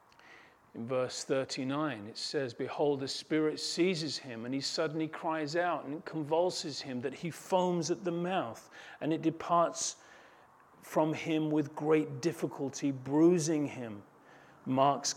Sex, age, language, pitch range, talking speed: male, 40-59, English, 135-160 Hz, 140 wpm